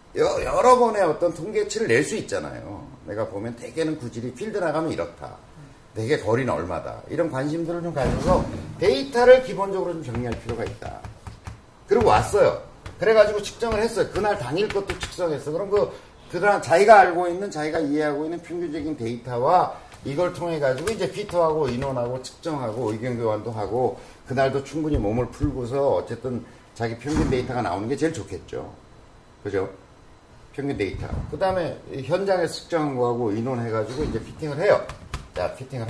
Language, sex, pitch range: Korean, male, 130-210 Hz